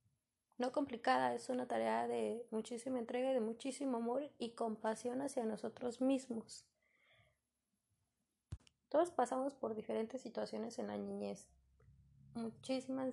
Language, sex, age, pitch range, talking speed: Spanish, female, 20-39, 200-235 Hz, 120 wpm